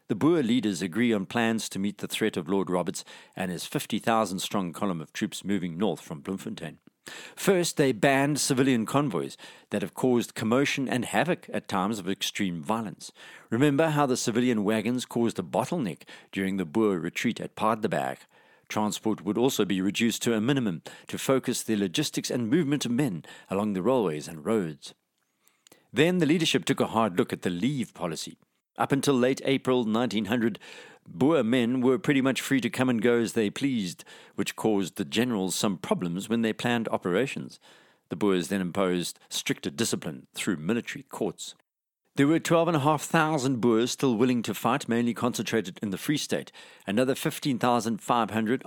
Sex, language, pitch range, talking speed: male, English, 100-130 Hz, 170 wpm